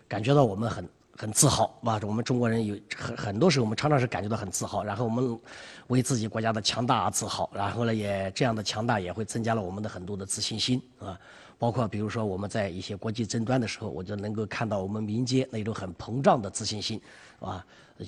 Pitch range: 110-145 Hz